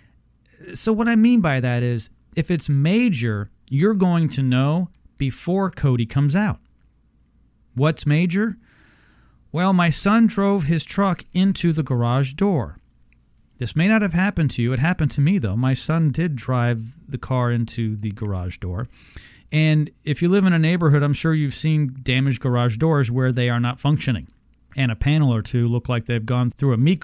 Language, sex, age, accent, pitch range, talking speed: English, male, 40-59, American, 120-155 Hz, 185 wpm